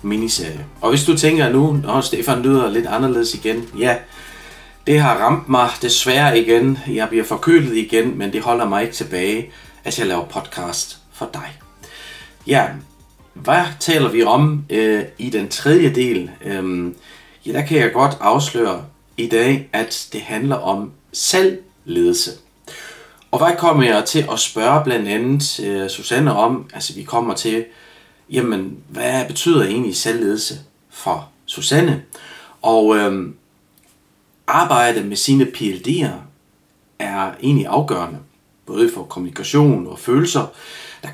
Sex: male